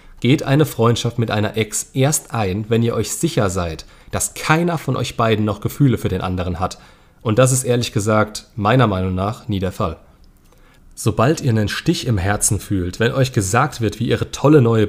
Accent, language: German, German